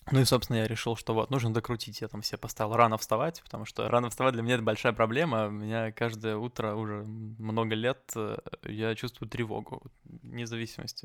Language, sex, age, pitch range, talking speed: Russian, male, 20-39, 110-120 Hz, 195 wpm